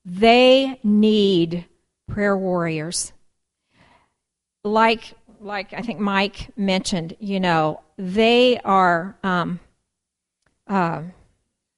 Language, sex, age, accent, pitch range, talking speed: English, female, 50-69, American, 180-215 Hz, 80 wpm